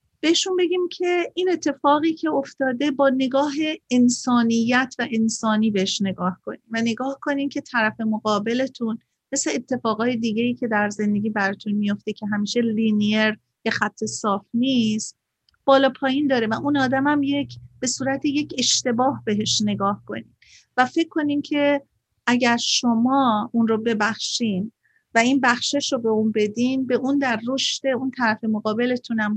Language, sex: Persian, female